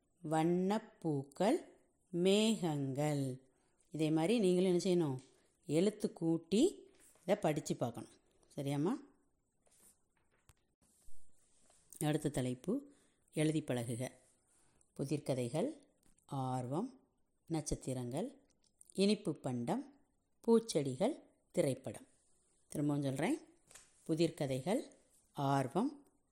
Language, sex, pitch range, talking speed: Tamil, female, 140-205 Hz, 65 wpm